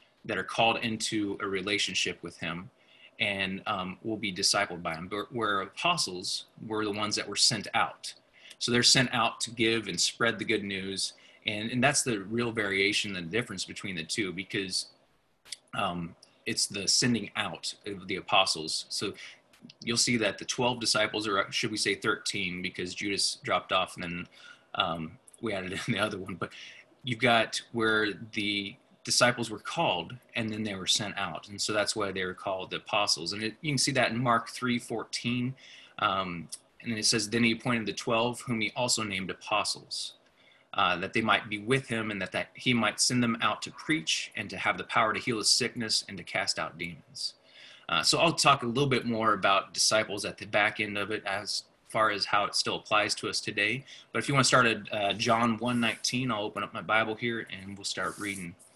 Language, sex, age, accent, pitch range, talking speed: English, male, 20-39, American, 100-120 Hz, 210 wpm